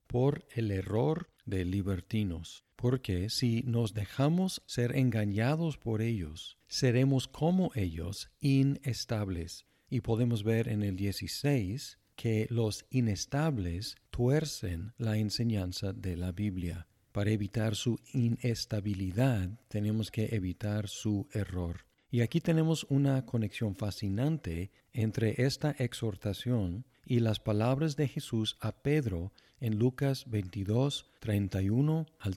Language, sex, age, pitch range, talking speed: Spanish, male, 50-69, 100-125 Hz, 115 wpm